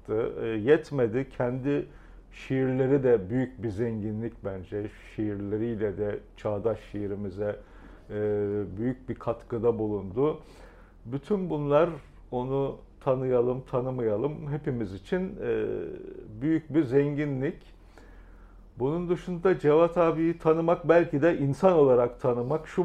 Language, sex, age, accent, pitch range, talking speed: Turkish, male, 50-69, native, 110-140 Hz, 95 wpm